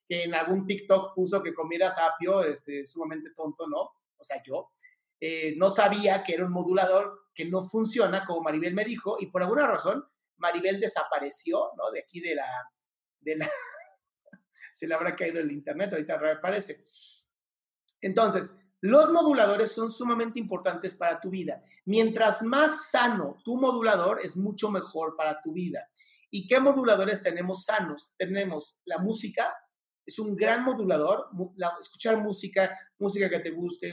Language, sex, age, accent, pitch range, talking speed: Spanish, male, 40-59, Mexican, 170-225 Hz, 155 wpm